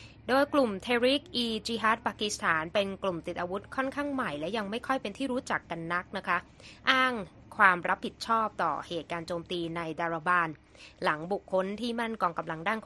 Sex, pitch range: female, 170-225 Hz